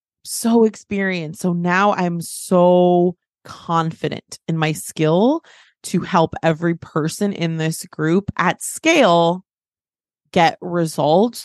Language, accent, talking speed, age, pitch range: English, American, 110 wpm, 20-39, 155-185 Hz